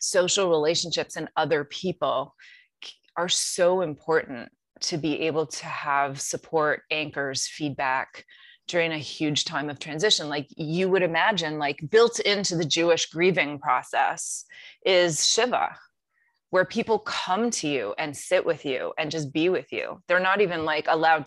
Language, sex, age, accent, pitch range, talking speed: English, female, 20-39, American, 145-180 Hz, 150 wpm